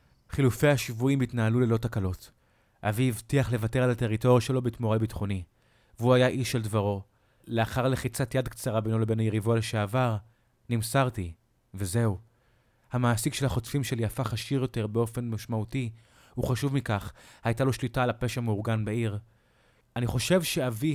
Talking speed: 145 wpm